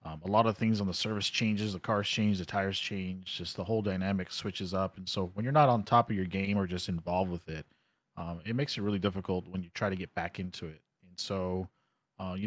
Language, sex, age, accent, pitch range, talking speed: English, male, 30-49, American, 95-120 Hz, 260 wpm